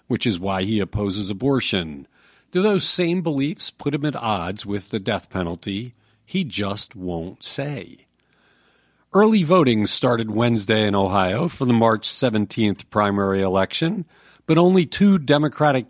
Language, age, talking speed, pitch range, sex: English, 50-69, 145 wpm, 105-150 Hz, male